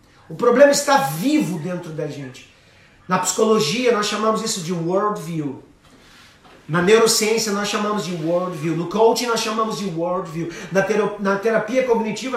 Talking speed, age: 155 wpm, 40-59